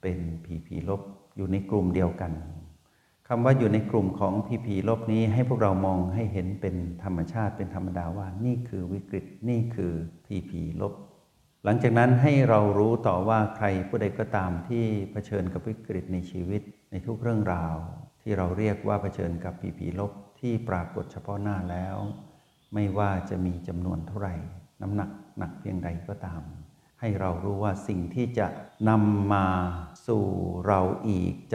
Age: 60-79